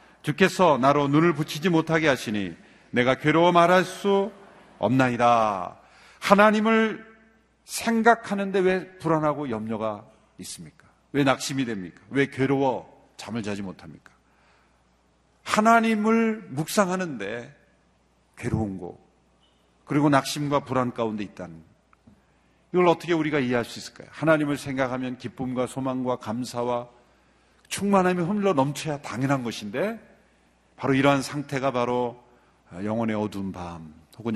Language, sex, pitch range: Korean, male, 110-170 Hz